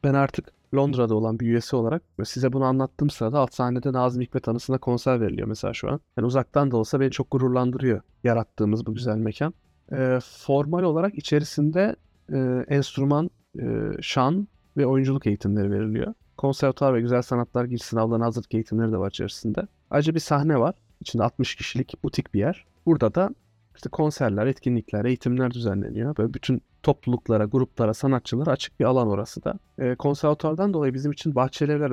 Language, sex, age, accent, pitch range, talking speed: Turkish, male, 30-49, native, 115-145 Hz, 165 wpm